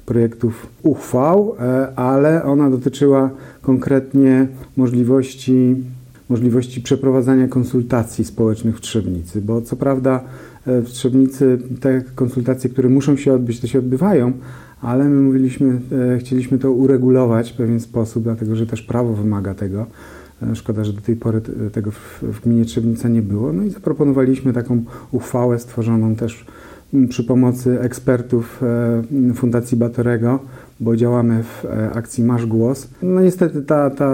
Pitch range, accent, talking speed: 115-130 Hz, native, 130 wpm